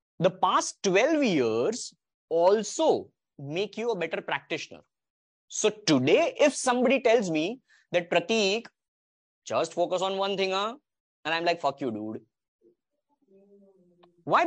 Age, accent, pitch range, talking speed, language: 20-39, Indian, 180-280 Hz, 125 wpm, English